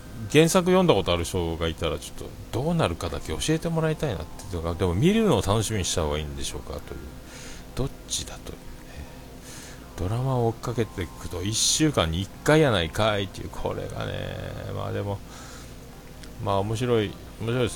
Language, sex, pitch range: Japanese, male, 80-115 Hz